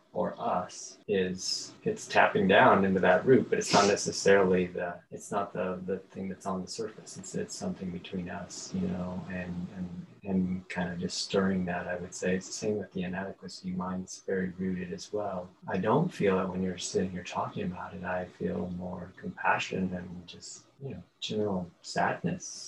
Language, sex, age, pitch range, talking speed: English, male, 30-49, 90-95 Hz, 195 wpm